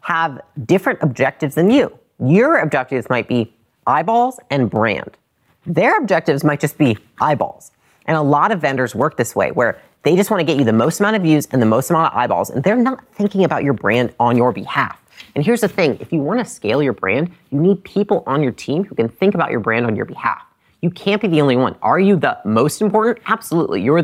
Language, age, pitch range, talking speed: English, 30-49, 130-190 Hz, 225 wpm